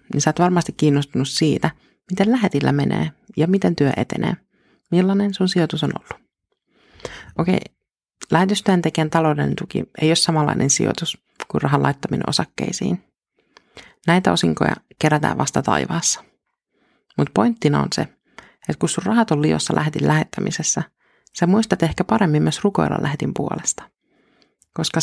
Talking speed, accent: 140 wpm, native